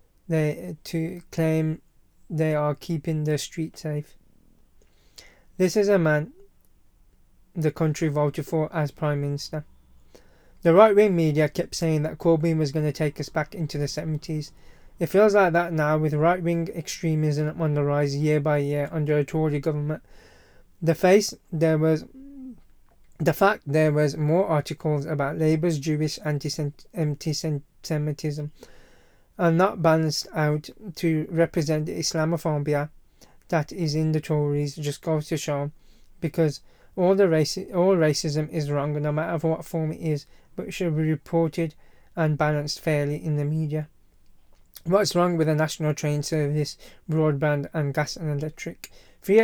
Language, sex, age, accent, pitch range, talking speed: English, male, 20-39, British, 150-165 Hz, 150 wpm